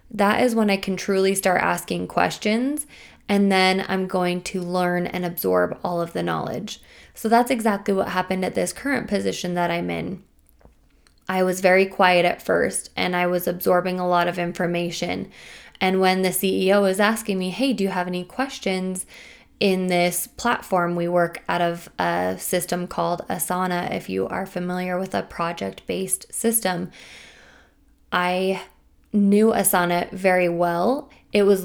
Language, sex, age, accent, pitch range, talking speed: English, female, 20-39, American, 175-195 Hz, 165 wpm